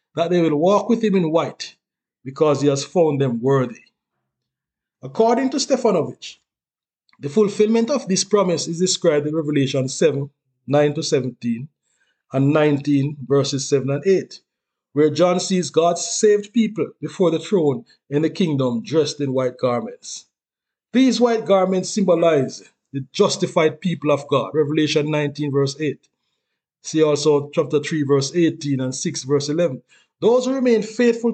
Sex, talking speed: male, 150 wpm